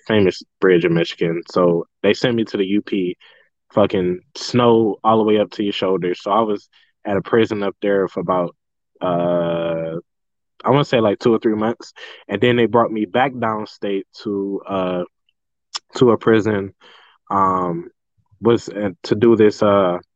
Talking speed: 175 wpm